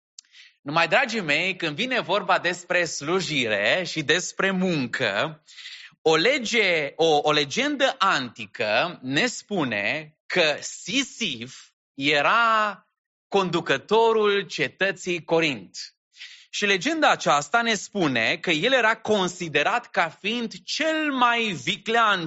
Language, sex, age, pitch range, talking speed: English, male, 30-49, 160-230 Hz, 100 wpm